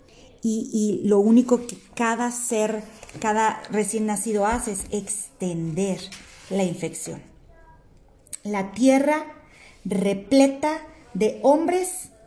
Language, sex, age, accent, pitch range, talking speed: Spanish, female, 40-59, Mexican, 215-280 Hz, 100 wpm